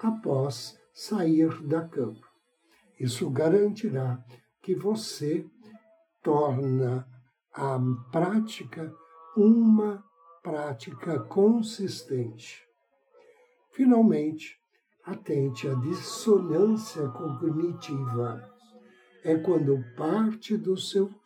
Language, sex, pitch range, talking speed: Portuguese, male, 135-220 Hz, 70 wpm